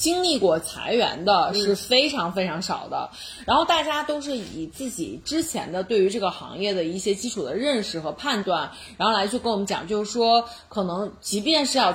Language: Chinese